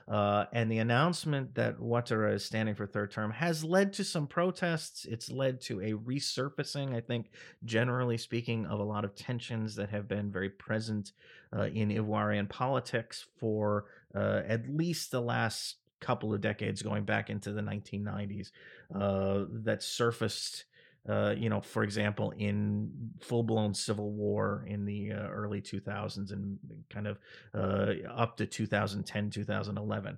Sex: male